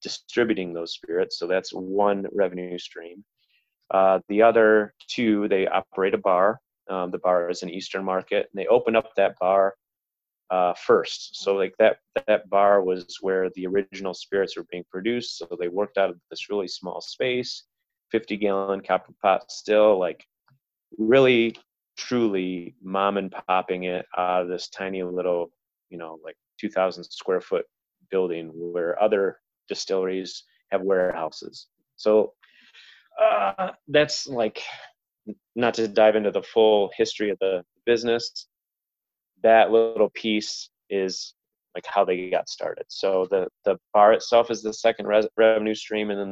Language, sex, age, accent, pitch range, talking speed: English, male, 30-49, American, 95-115 Hz, 155 wpm